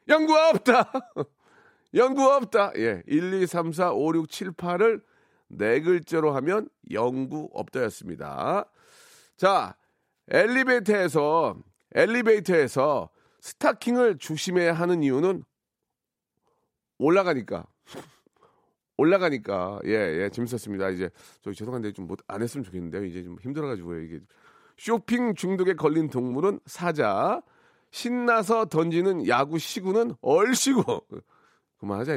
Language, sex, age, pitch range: Korean, male, 40-59, 145-230 Hz